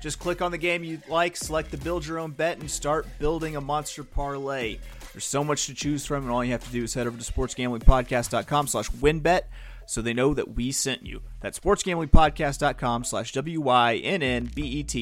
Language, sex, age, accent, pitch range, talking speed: English, male, 30-49, American, 115-150 Hz, 195 wpm